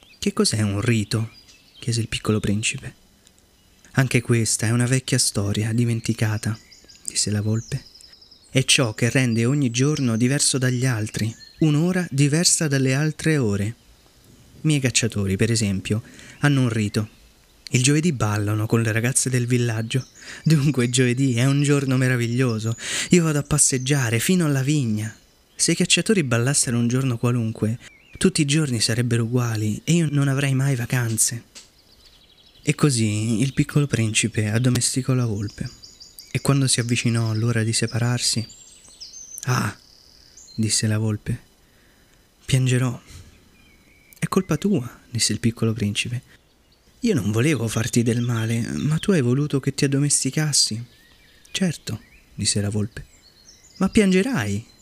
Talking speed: 135 wpm